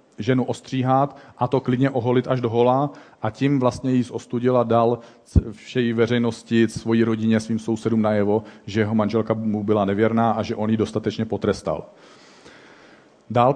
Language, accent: Czech, native